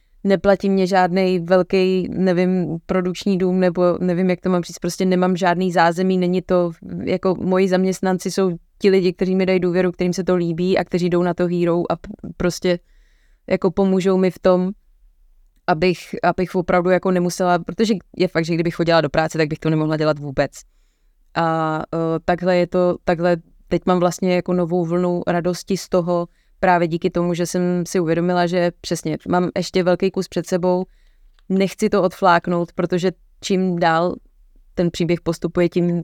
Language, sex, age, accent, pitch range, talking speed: Czech, female, 20-39, native, 170-185 Hz, 175 wpm